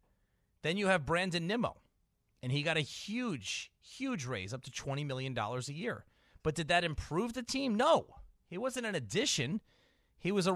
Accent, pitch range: American, 160-215 Hz